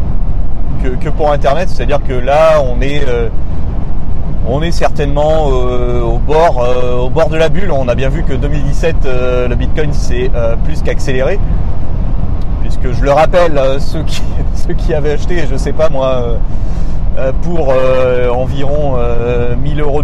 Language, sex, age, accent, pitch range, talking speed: French, male, 30-49, French, 100-140 Hz, 170 wpm